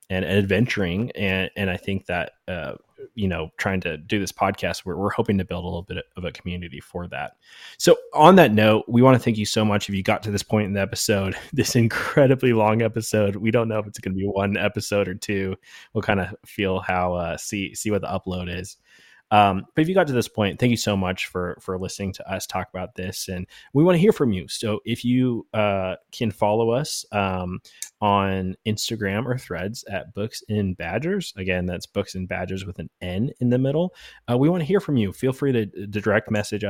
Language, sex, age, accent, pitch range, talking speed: English, male, 20-39, American, 95-115 Hz, 235 wpm